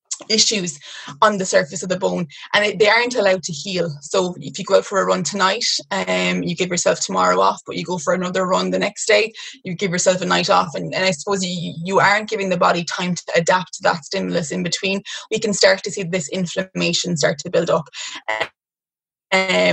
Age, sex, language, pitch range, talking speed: 20-39, female, English, 175-205 Hz, 230 wpm